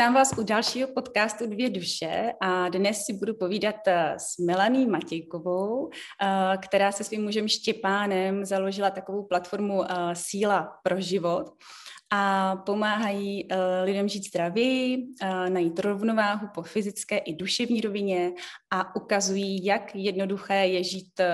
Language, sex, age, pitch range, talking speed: Czech, female, 20-39, 180-205 Hz, 125 wpm